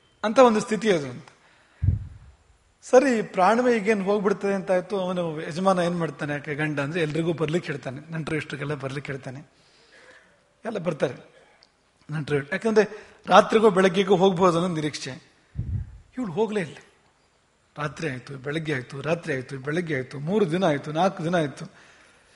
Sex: male